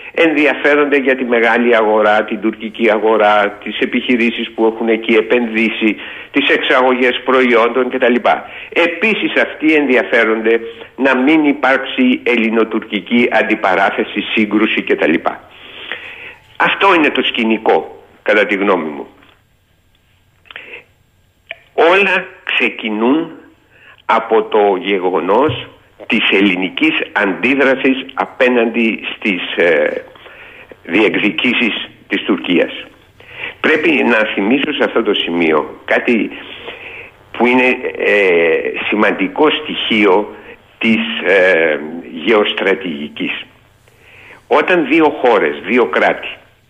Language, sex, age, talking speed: Greek, male, 60-79, 90 wpm